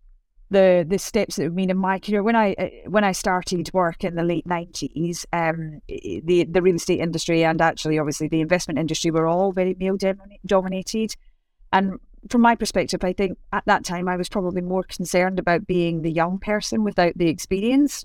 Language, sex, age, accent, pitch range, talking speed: English, female, 30-49, British, 175-195 Hz, 195 wpm